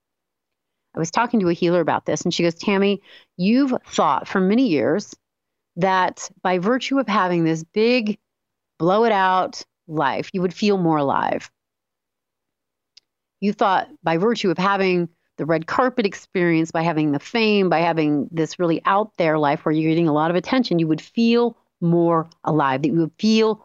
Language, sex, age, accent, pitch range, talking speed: English, female, 30-49, American, 150-200 Hz, 180 wpm